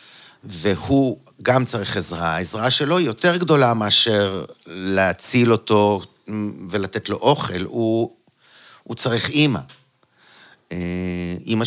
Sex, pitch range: male, 100-135 Hz